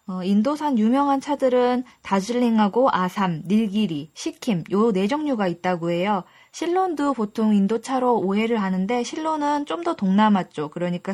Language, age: Korean, 20-39